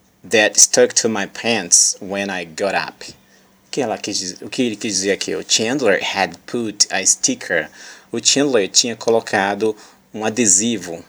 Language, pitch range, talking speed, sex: English, 100-140 Hz, 145 wpm, male